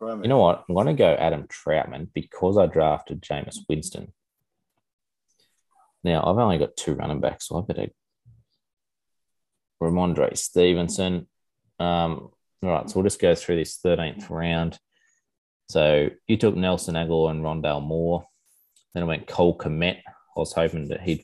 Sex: male